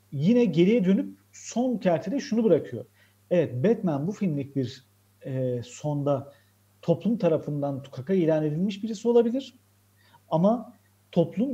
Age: 50-69